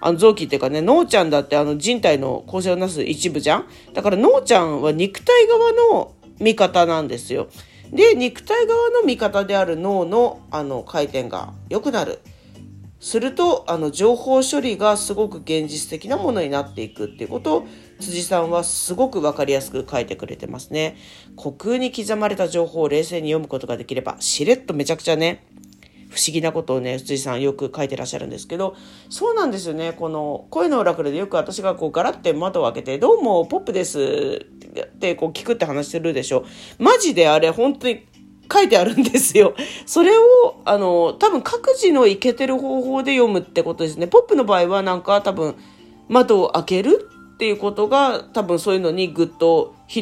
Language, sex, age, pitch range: Japanese, female, 40-59, 155-255 Hz